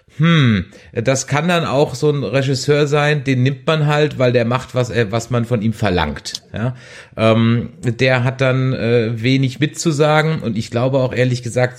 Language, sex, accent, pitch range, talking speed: German, male, German, 110-135 Hz, 185 wpm